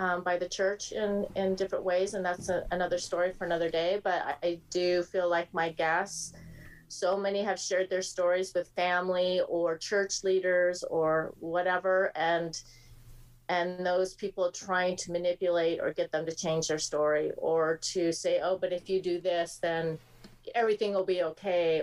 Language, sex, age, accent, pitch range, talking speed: English, female, 30-49, American, 165-190 Hz, 180 wpm